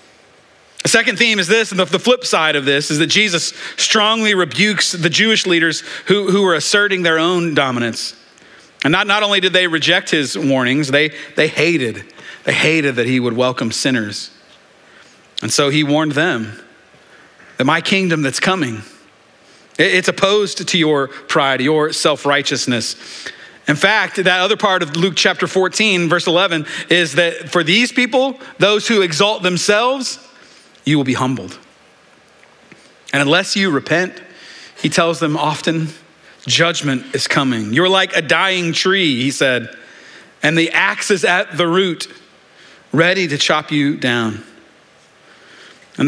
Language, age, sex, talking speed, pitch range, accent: English, 40-59, male, 155 wpm, 145-190 Hz, American